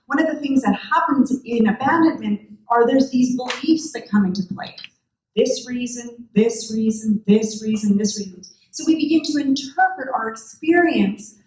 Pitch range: 205-255 Hz